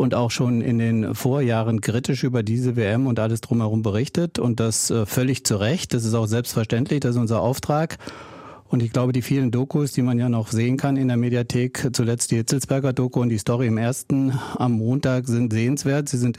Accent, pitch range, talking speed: German, 120-140 Hz, 205 wpm